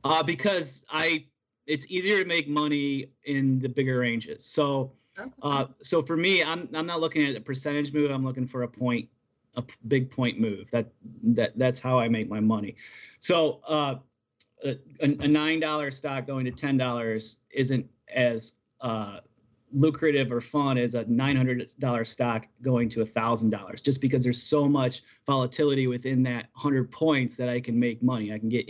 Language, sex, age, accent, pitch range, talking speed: English, male, 30-49, American, 125-155 Hz, 185 wpm